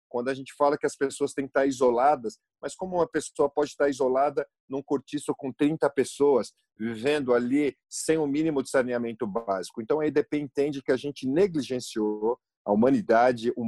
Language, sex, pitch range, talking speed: Portuguese, male, 115-140 Hz, 185 wpm